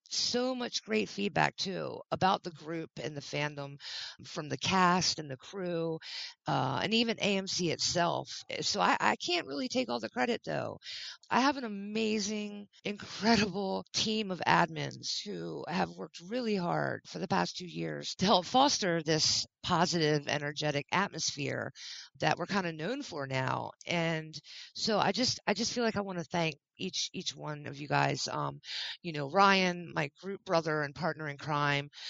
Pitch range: 155-215 Hz